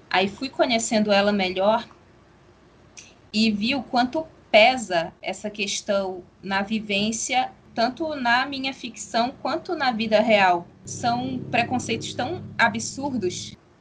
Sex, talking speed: female, 115 wpm